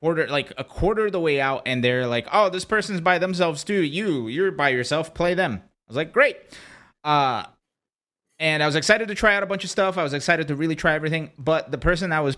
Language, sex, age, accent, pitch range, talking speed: English, male, 30-49, American, 120-165 Hz, 245 wpm